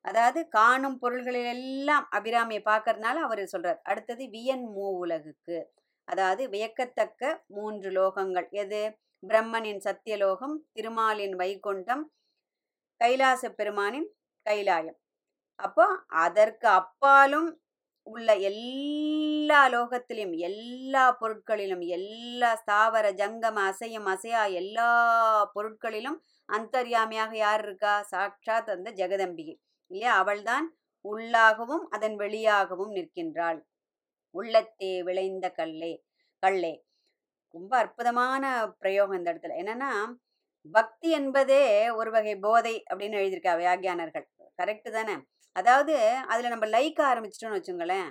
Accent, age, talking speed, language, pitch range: native, 30-49, 95 wpm, Tamil, 195-255 Hz